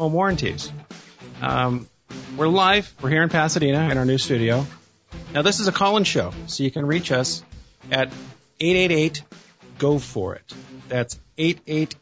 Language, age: English, 40-59